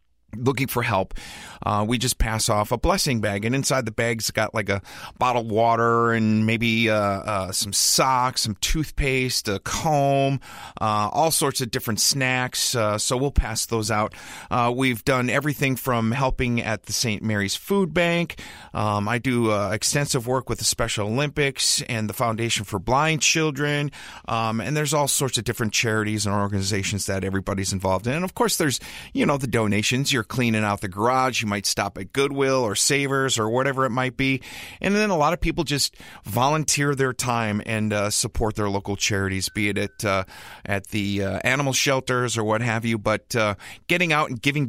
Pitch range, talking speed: 110-145 Hz, 195 wpm